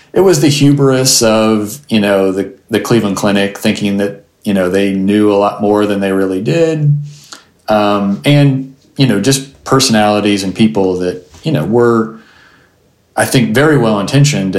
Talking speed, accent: 165 wpm, American